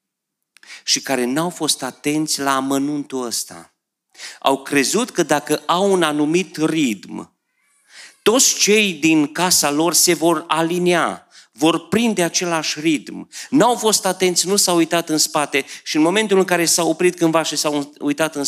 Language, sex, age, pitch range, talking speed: Romanian, male, 40-59, 115-160 Hz, 160 wpm